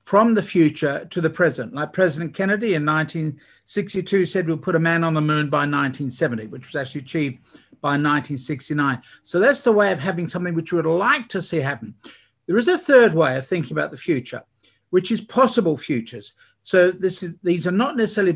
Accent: Australian